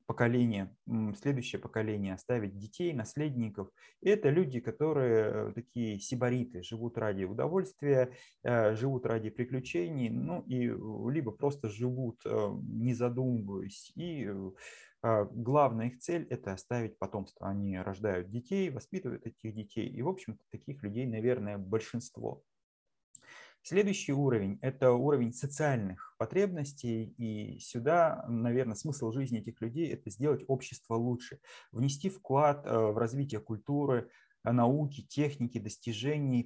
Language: Russian